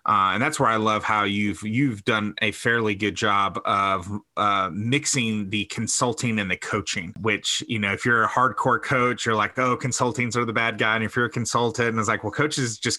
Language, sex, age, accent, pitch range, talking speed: English, male, 30-49, American, 105-125 Hz, 225 wpm